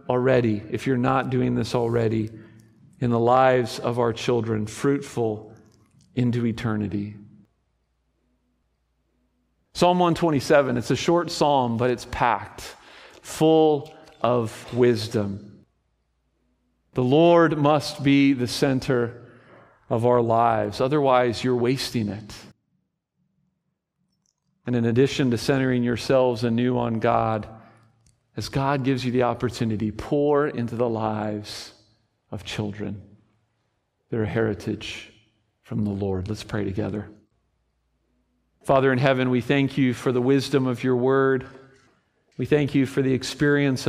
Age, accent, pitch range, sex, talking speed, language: 40-59, American, 110-140 Hz, male, 120 wpm, English